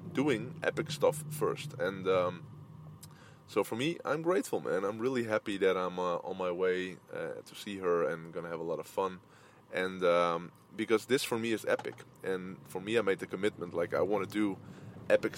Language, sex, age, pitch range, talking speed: English, male, 20-39, 95-155 Hz, 210 wpm